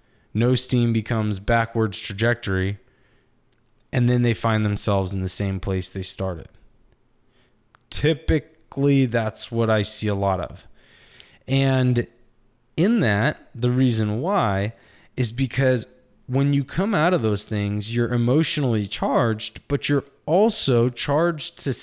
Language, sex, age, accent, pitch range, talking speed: English, male, 20-39, American, 110-140 Hz, 130 wpm